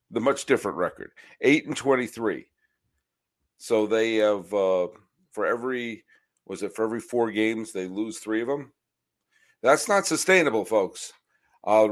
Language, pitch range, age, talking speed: English, 105-140 Hz, 50-69, 145 wpm